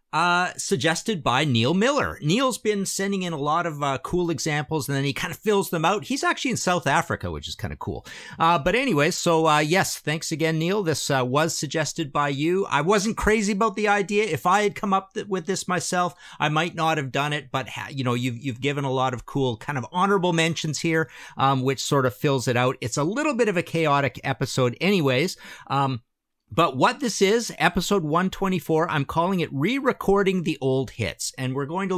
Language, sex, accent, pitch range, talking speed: English, male, American, 130-170 Hz, 220 wpm